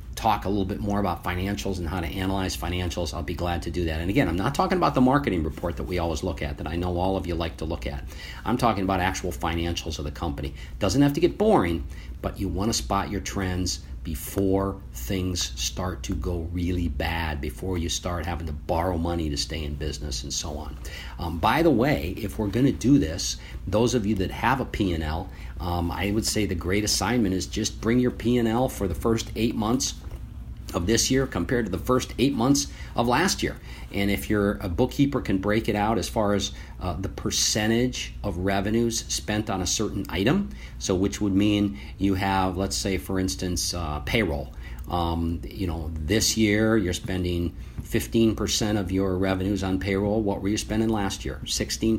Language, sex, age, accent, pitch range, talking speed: English, male, 50-69, American, 85-105 Hz, 215 wpm